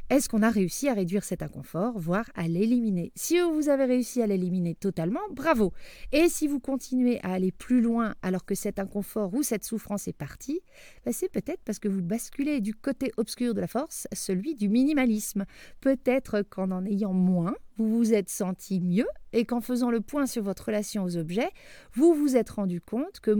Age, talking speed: 40-59, 200 wpm